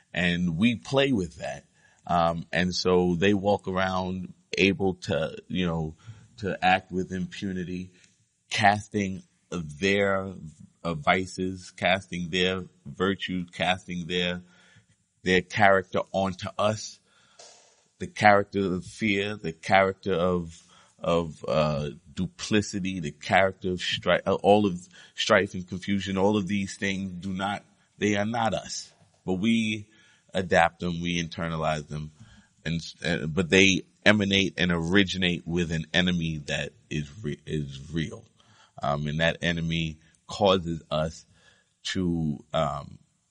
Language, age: Russian, 30-49